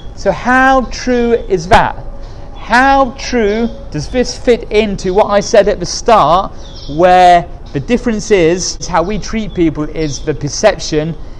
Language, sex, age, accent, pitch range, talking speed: English, male, 30-49, British, 145-195 Hz, 150 wpm